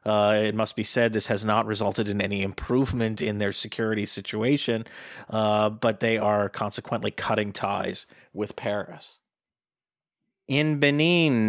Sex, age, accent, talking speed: male, 30-49, American, 140 wpm